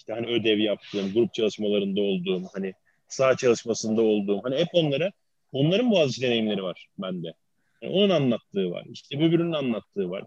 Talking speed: 160 wpm